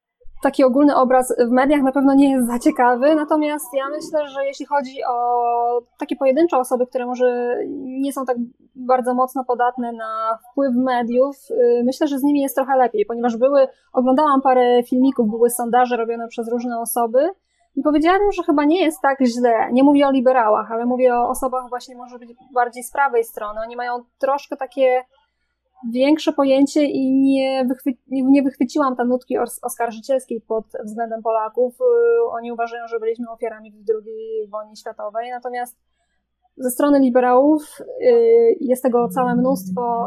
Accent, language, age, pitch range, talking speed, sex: native, Polish, 20-39, 240-280 Hz, 160 wpm, female